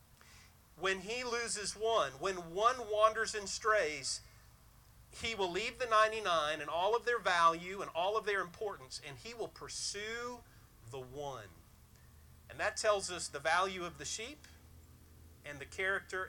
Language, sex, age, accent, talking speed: English, male, 40-59, American, 155 wpm